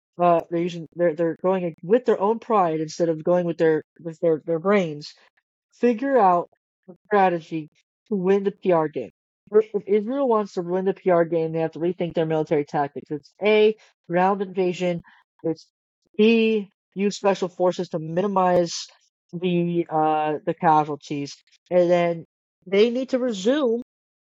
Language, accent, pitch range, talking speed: English, American, 165-205 Hz, 160 wpm